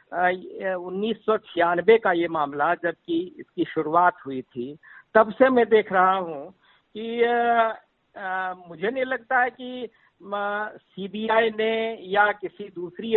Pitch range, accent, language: 180-220 Hz, native, Hindi